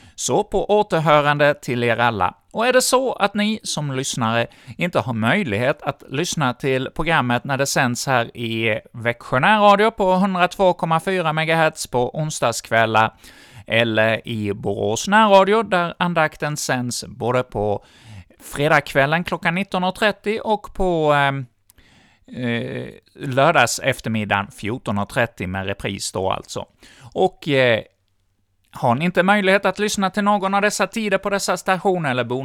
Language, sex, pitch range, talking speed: Swedish, male, 115-185 Hz, 135 wpm